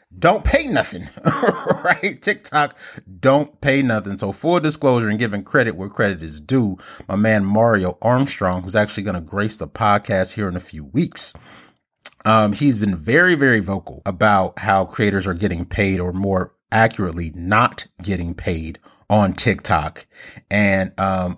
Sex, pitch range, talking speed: male, 95-125 Hz, 155 wpm